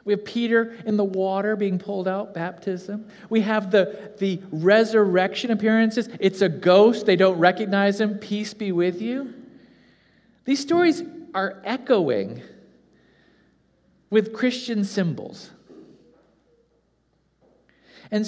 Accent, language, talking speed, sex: American, English, 115 wpm, male